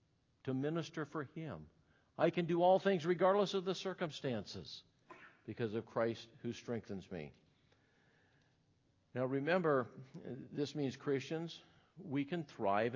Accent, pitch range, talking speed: American, 120-155 Hz, 125 wpm